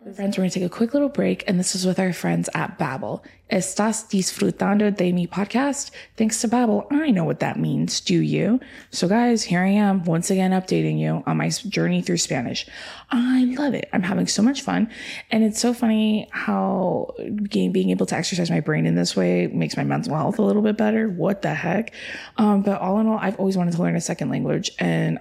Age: 20-39